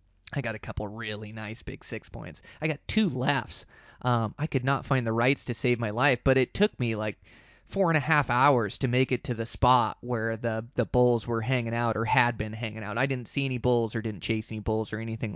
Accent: American